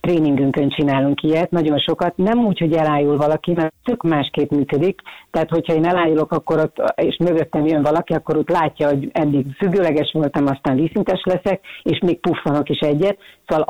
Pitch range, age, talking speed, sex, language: 145-170 Hz, 40-59, 175 wpm, female, Hungarian